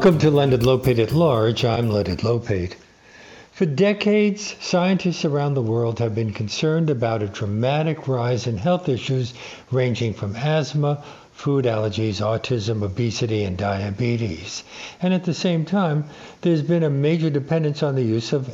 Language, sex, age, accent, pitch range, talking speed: English, male, 60-79, American, 115-150 Hz, 155 wpm